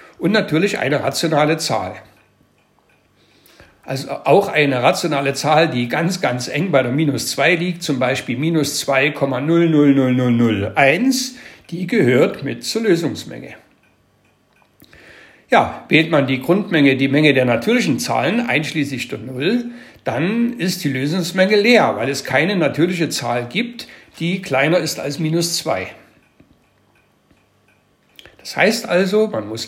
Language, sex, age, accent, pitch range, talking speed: German, male, 60-79, German, 130-185 Hz, 125 wpm